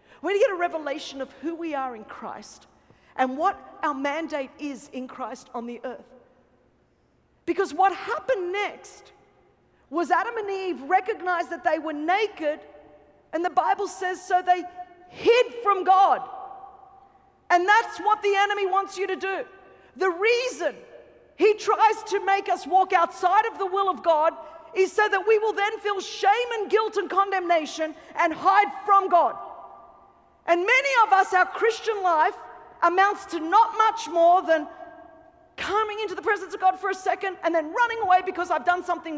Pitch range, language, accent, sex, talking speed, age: 280-390 Hz, English, Australian, female, 175 wpm, 40-59